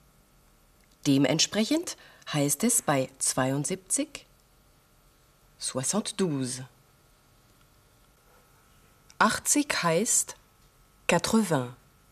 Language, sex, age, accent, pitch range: German, female, 30-49, German, 125-165 Hz